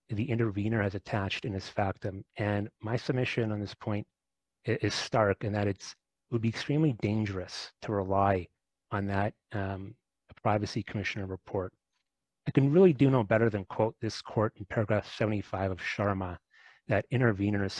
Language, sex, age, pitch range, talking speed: English, male, 30-49, 100-120 Hz, 160 wpm